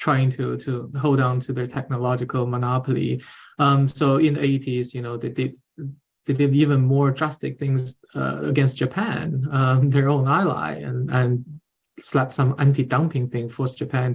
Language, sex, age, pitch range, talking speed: English, male, 20-39, 130-150 Hz, 170 wpm